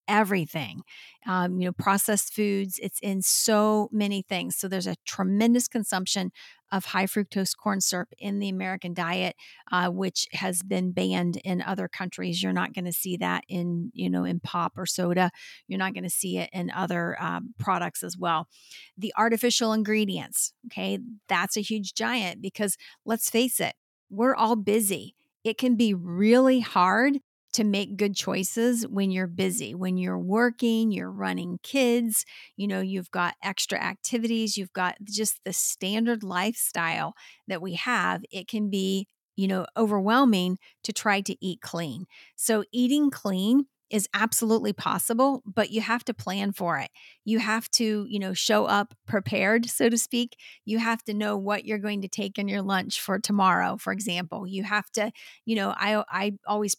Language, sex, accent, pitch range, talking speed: English, female, American, 185-220 Hz, 175 wpm